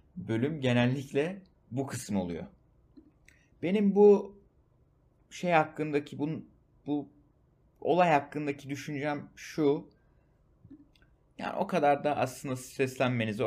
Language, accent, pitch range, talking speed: Turkish, native, 105-140 Hz, 95 wpm